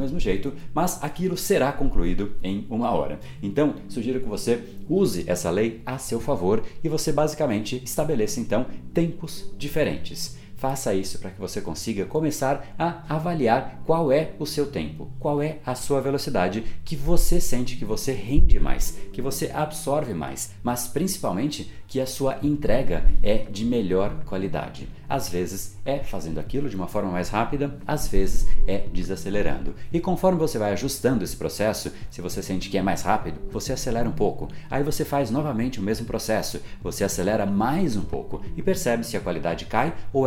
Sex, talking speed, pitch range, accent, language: male, 175 wpm, 100-145 Hz, Brazilian, Portuguese